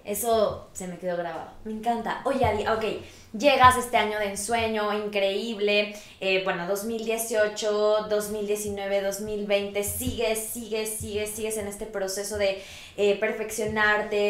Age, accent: 20-39, Mexican